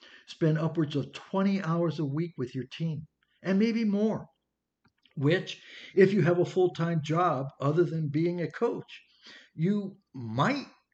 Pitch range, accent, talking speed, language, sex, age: 130-190 Hz, American, 150 wpm, English, male, 60-79